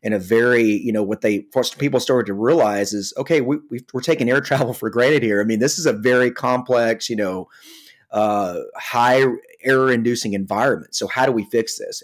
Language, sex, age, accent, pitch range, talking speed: English, male, 30-49, American, 110-130 Hz, 210 wpm